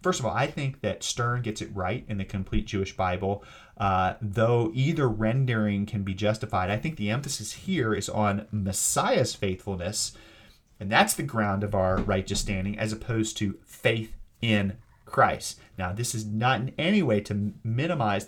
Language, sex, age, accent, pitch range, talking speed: English, male, 30-49, American, 100-115 Hz, 175 wpm